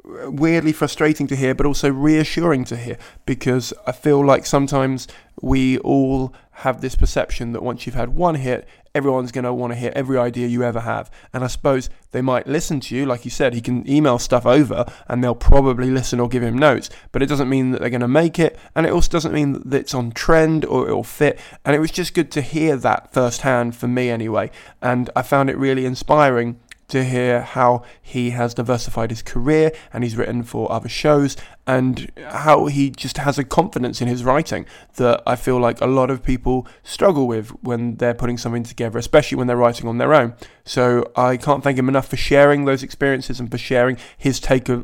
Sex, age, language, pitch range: male, 20-39, English, 120-140 Hz